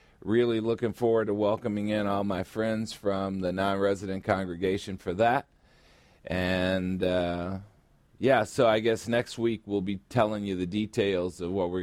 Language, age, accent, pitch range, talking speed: English, 40-59, American, 90-115 Hz, 160 wpm